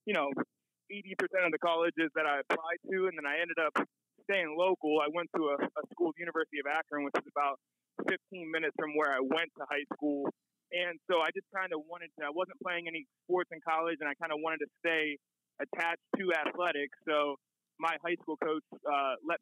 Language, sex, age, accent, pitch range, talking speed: English, male, 30-49, American, 145-170 Hz, 215 wpm